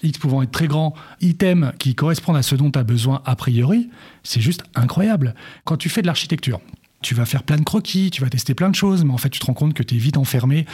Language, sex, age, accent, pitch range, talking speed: French, male, 40-59, French, 130-170 Hz, 270 wpm